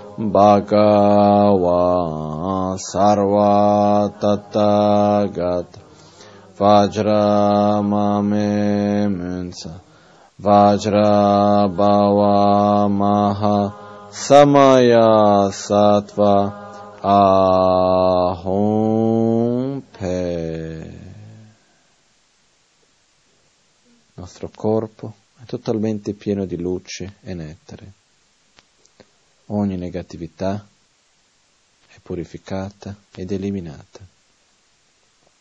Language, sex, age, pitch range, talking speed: Italian, male, 20-39, 95-105 Hz, 40 wpm